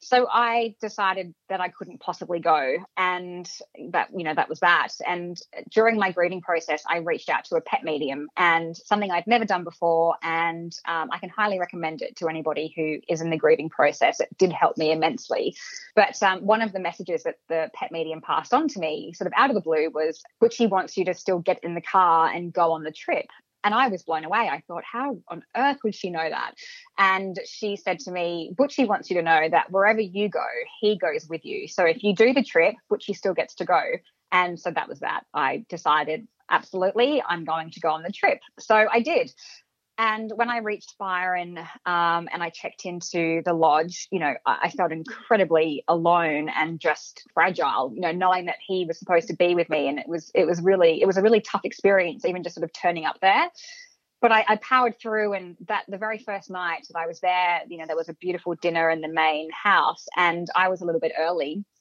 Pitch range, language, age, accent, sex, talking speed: 165-210 Hz, English, 20-39, Australian, female, 230 wpm